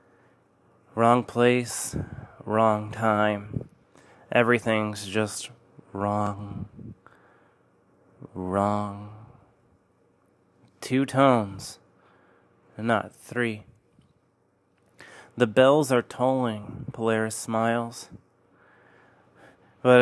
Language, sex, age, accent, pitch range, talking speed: English, male, 20-39, American, 110-130 Hz, 60 wpm